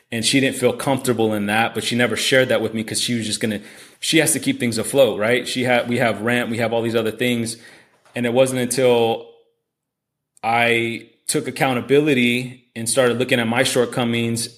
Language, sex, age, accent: English, male, 30-49, American